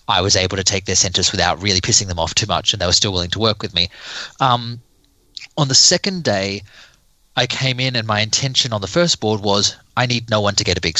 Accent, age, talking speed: Australian, 20-39, 255 wpm